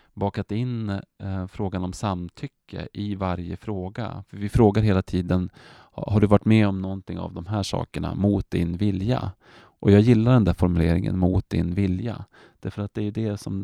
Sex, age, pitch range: male, 30-49, 90-110 Hz